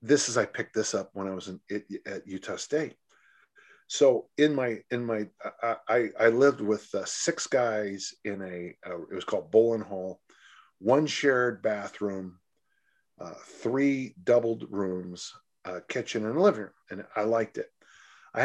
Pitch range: 105-145 Hz